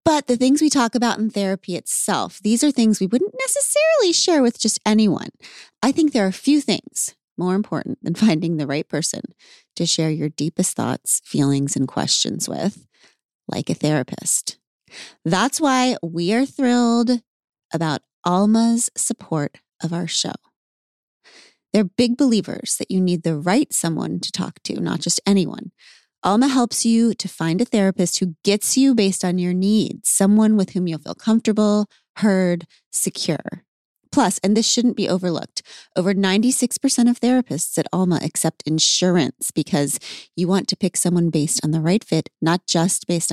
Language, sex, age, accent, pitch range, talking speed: English, female, 30-49, American, 170-240 Hz, 170 wpm